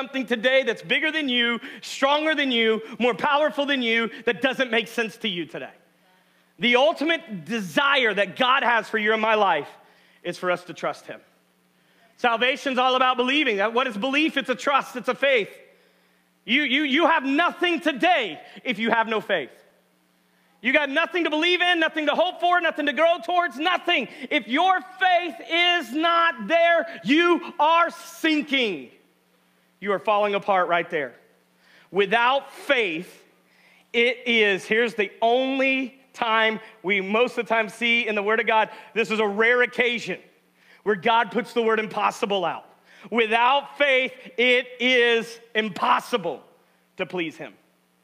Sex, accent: male, American